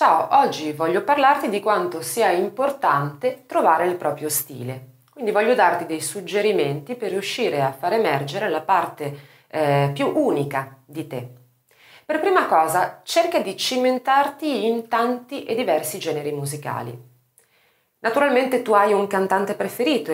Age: 30-49